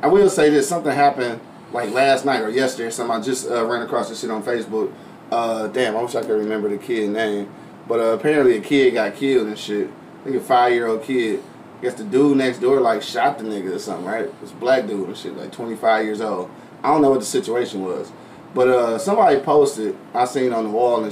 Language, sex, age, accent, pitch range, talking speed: English, male, 20-39, American, 115-140 Hz, 245 wpm